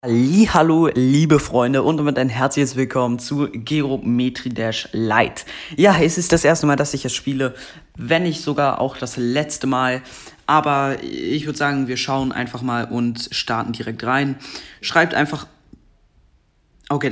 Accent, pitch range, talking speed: German, 125-145 Hz, 155 wpm